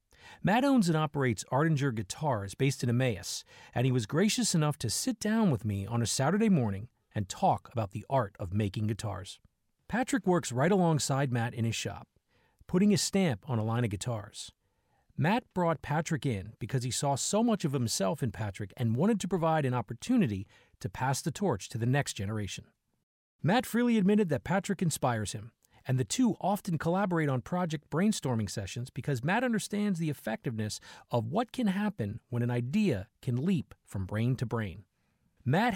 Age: 40-59